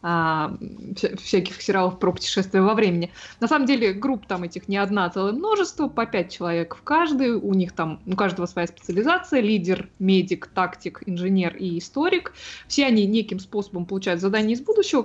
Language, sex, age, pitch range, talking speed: Russian, female, 20-39, 185-240 Hz, 170 wpm